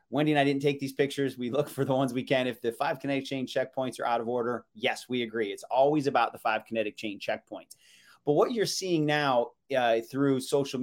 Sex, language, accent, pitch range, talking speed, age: male, English, American, 115-135 Hz, 240 wpm, 30-49